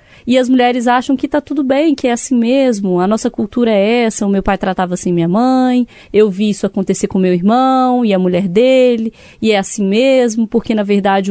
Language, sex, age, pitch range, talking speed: Portuguese, female, 20-39, 195-255 Hz, 225 wpm